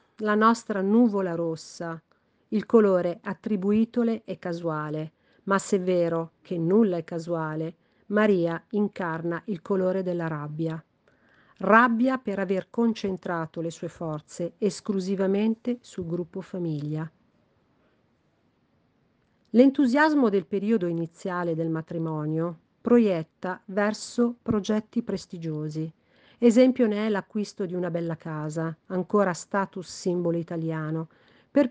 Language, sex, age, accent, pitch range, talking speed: Italian, female, 50-69, native, 165-215 Hz, 110 wpm